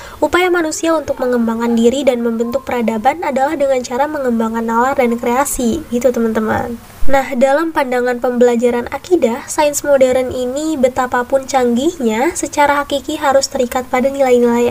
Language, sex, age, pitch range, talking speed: Indonesian, female, 20-39, 240-285 Hz, 135 wpm